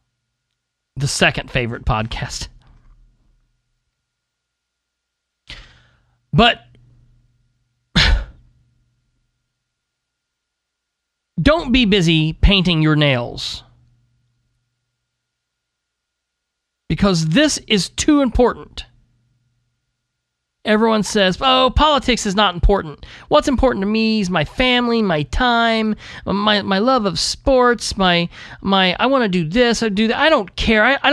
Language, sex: English, male